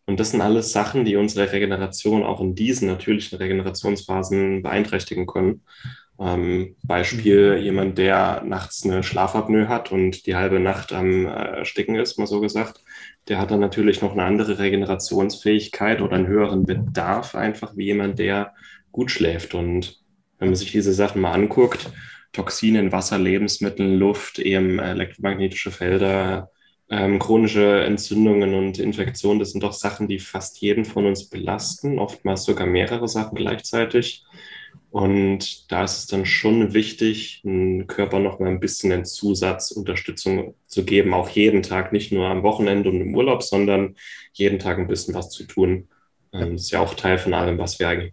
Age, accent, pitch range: 10-29, German, 95-105 Hz